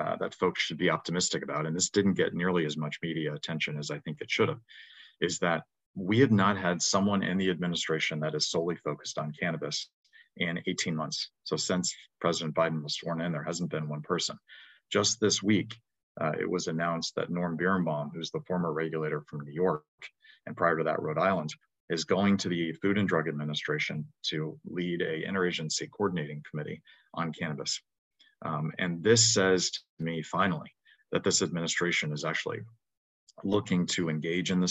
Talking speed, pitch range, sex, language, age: 190 wpm, 80-95 Hz, male, English, 40-59